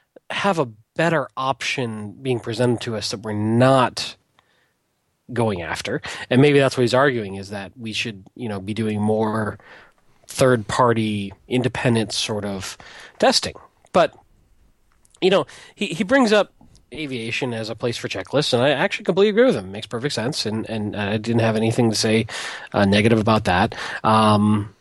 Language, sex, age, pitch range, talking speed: English, male, 30-49, 110-145 Hz, 170 wpm